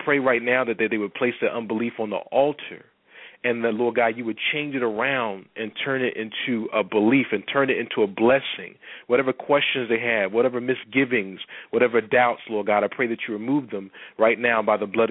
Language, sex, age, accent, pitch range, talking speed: English, male, 40-59, American, 105-125 Hz, 220 wpm